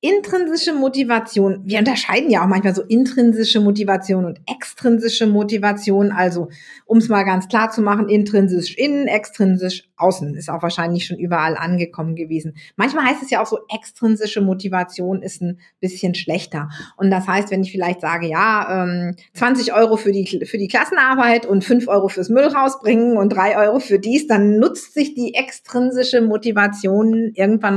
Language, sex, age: German, female, 50-69